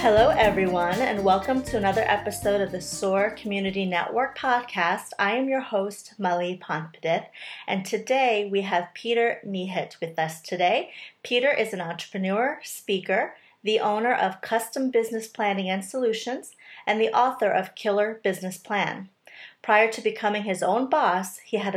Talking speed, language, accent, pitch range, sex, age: 155 wpm, English, American, 185-225 Hz, female, 40-59